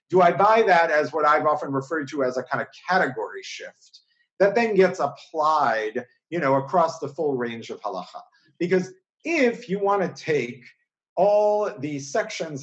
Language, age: English, 50-69